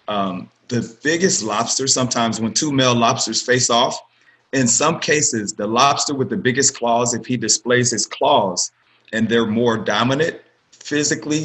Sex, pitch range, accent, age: male, 115-135 Hz, American, 30-49